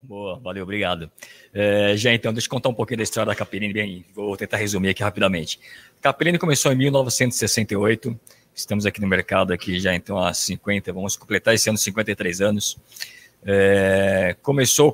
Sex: male